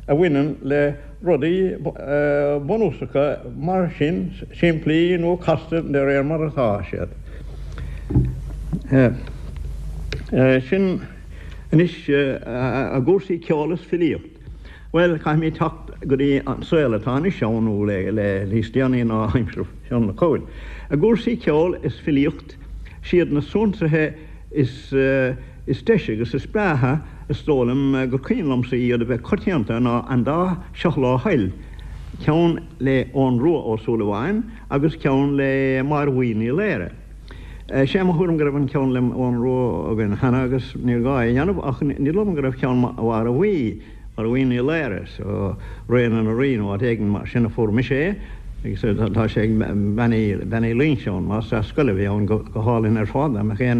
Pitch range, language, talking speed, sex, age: 110-155 Hz, English, 135 wpm, male, 60-79